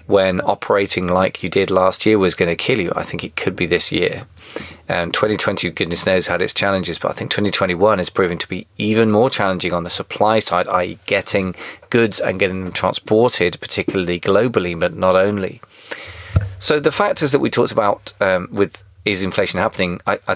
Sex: male